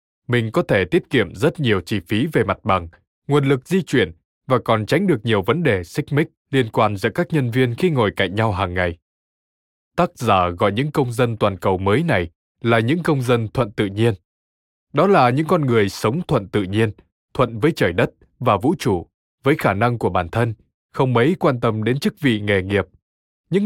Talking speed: 220 wpm